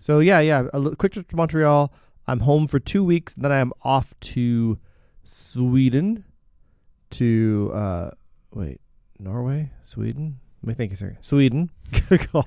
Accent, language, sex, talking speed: American, English, male, 155 wpm